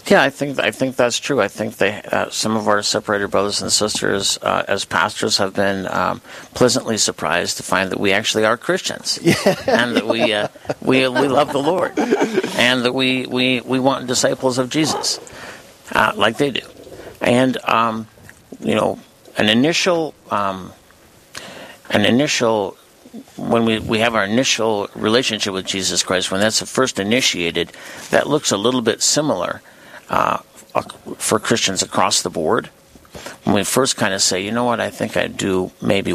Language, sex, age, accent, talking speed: English, male, 60-79, American, 175 wpm